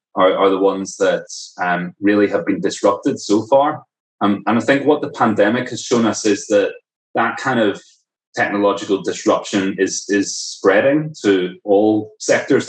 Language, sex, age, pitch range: Thai, male, 30-49, 95-125 Hz